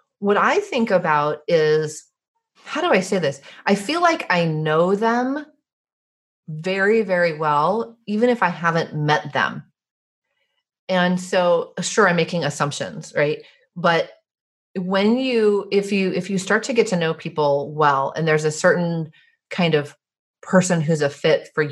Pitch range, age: 150-200 Hz, 30-49